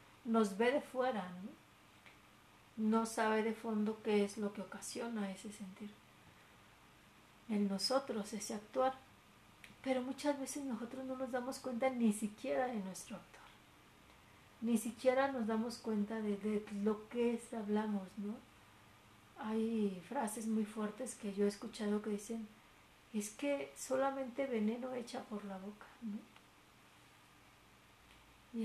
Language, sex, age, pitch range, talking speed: Spanish, female, 40-59, 210-250 Hz, 135 wpm